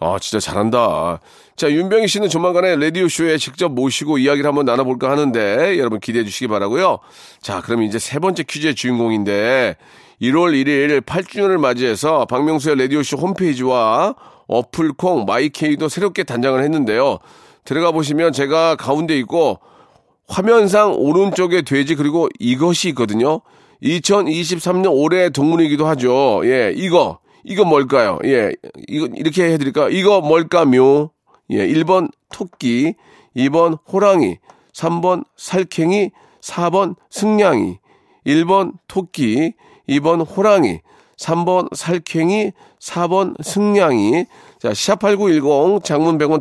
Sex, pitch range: male, 140-185 Hz